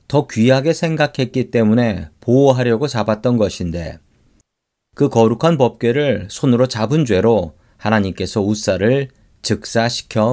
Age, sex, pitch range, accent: 40-59, male, 100-135 Hz, native